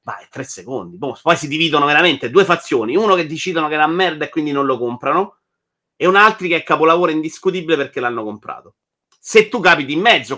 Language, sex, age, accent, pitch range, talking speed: Italian, male, 30-49, native, 125-170 Hz, 210 wpm